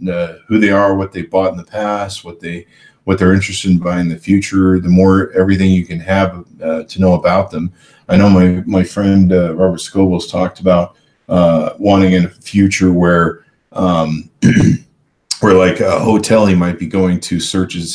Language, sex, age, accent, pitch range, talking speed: English, male, 40-59, American, 90-95 Hz, 195 wpm